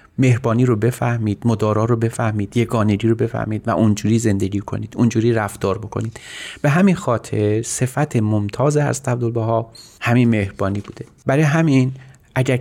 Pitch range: 105-130 Hz